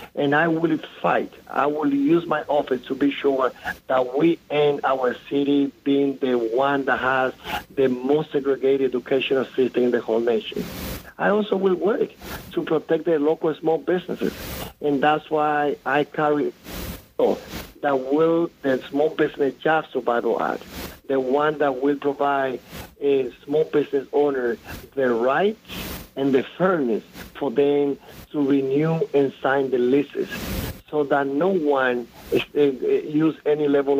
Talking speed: 150 wpm